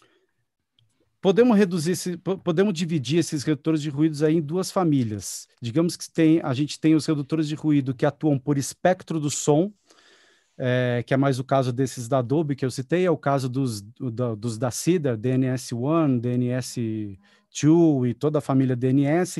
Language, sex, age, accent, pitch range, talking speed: Portuguese, male, 40-59, Brazilian, 130-165 Hz, 175 wpm